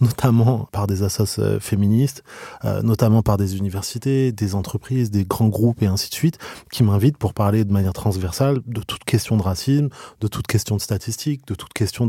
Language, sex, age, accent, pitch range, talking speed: French, male, 20-39, French, 105-125 Hz, 195 wpm